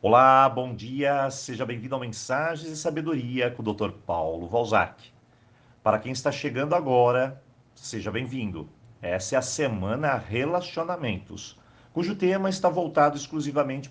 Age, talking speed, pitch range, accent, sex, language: 50-69, 135 wpm, 115-165 Hz, Brazilian, male, Portuguese